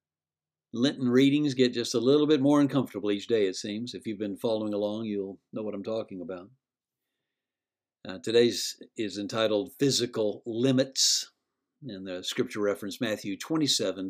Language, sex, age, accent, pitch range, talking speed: English, male, 60-79, American, 105-150 Hz, 155 wpm